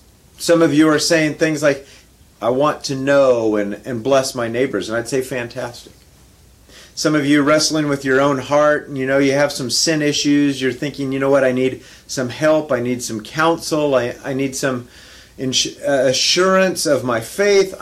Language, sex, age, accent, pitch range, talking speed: English, male, 40-59, American, 130-165 Hz, 200 wpm